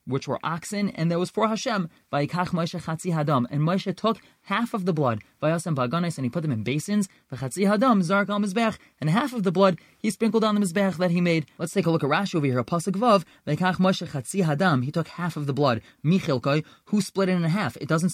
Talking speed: 180 wpm